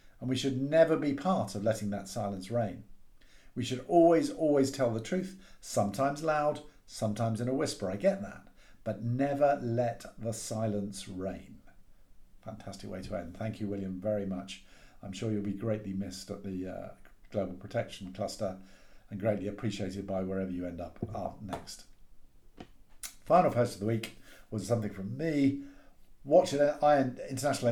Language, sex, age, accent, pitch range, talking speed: English, male, 50-69, British, 100-135 Hz, 160 wpm